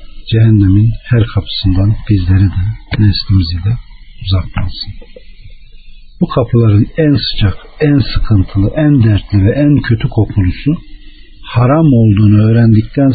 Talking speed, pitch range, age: 105 wpm, 100-135 Hz, 50-69